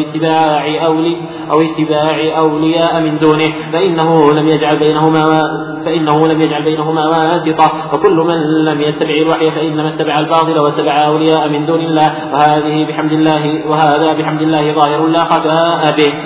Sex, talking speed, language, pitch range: male, 150 wpm, Arabic, 150-160 Hz